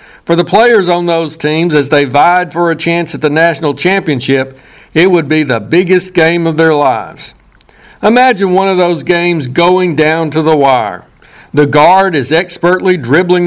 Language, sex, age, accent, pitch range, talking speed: English, male, 60-79, American, 145-175 Hz, 180 wpm